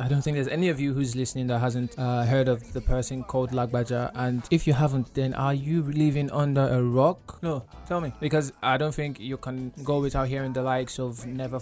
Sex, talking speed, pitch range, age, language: male, 230 wpm, 125-140 Hz, 20-39, English